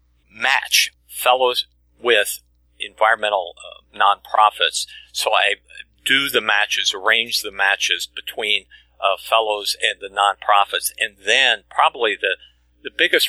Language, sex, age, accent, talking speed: English, male, 50-69, American, 115 wpm